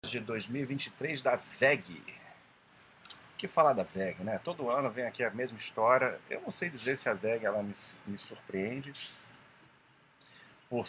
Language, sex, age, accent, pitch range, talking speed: Portuguese, male, 40-59, Brazilian, 95-130 Hz, 155 wpm